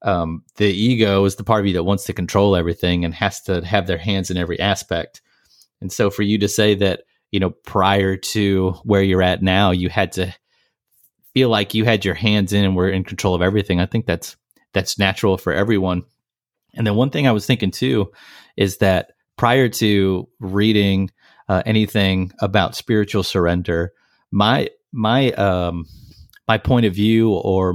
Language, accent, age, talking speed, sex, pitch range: English, American, 30-49, 185 wpm, male, 95-110 Hz